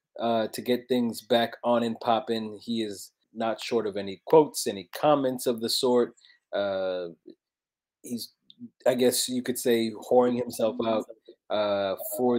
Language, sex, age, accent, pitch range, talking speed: English, male, 20-39, American, 110-145 Hz, 155 wpm